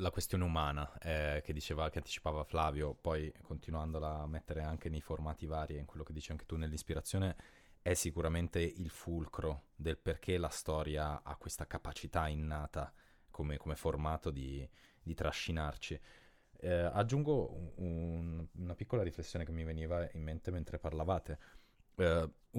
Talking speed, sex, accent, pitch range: 150 wpm, male, native, 75-95 Hz